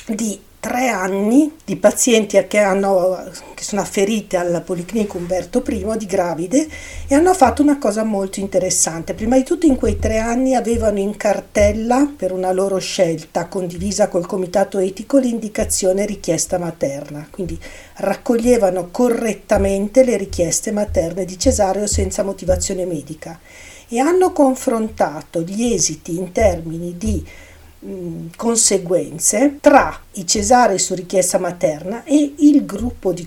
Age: 50-69